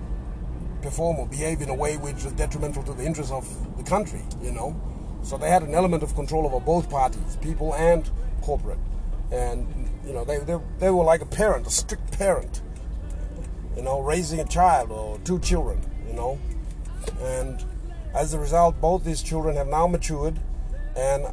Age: 30-49